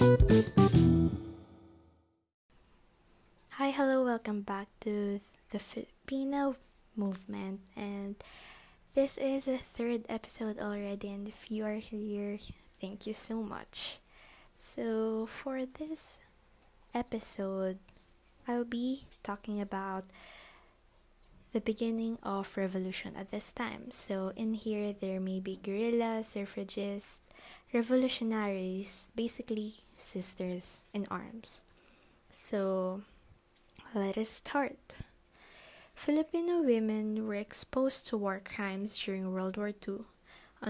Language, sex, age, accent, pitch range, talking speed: English, female, 20-39, Filipino, 195-235 Hz, 100 wpm